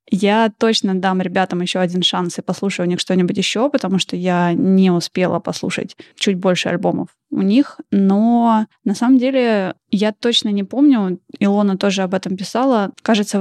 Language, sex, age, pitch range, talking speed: Russian, female, 20-39, 180-210 Hz, 170 wpm